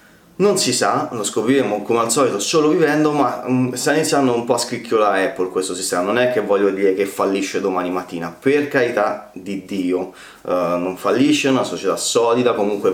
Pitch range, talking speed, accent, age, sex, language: 95-130 Hz, 195 wpm, native, 30-49, male, Italian